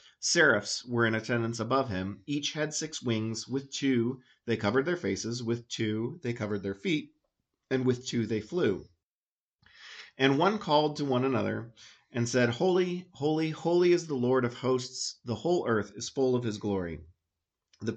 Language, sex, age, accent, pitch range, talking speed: English, male, 40-59, American, 110-140 Hz, 175 wpm